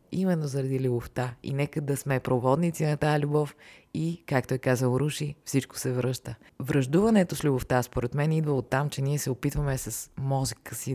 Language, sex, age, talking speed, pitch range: Bulgarian, female, 30-49, 185 wpm, 125-145 Hz